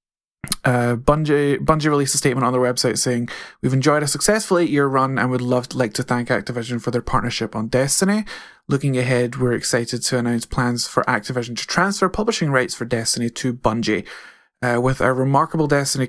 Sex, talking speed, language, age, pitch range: male, 190 wpm, English, 20-39, 125-155 Hz